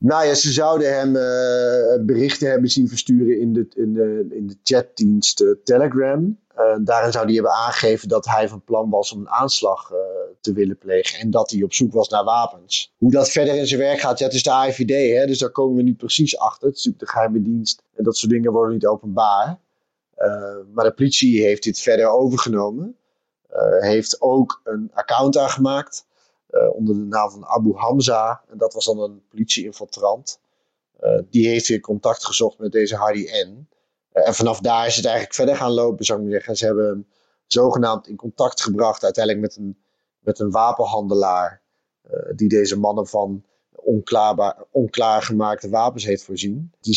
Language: Dutch